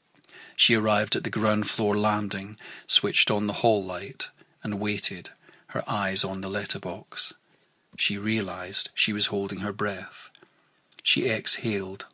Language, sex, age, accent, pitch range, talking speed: English, male, 40-59, British, 100-115 Hz, 140 wpm